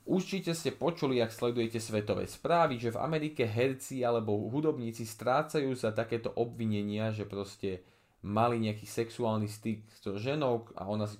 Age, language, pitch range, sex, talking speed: 20-39, English, 110-135 Hz, male, 145 wpm